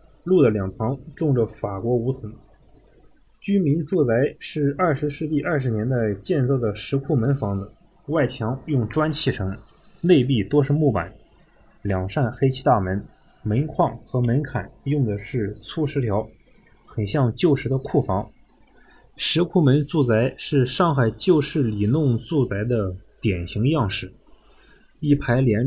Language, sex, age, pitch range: Chinese, male, 20-39, 105-145 Hz